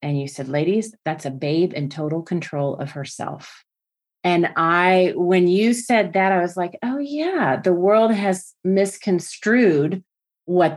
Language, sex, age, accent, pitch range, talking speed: English, female, 30-49, American, 150-180 Hz, 155 wpm